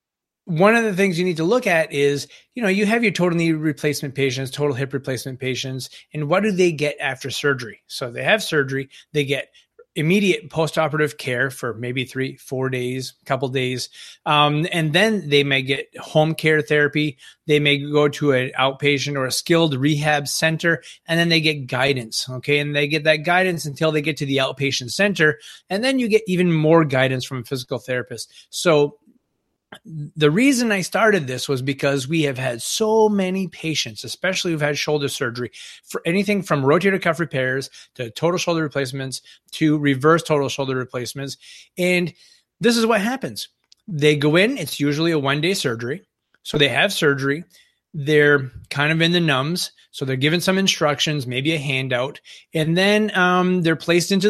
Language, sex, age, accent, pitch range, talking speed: English, male, 30-49, American, 135-175 Hz, 185 wpm